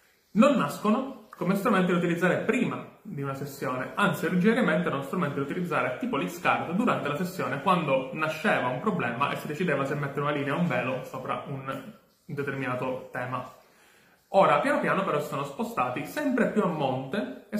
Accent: native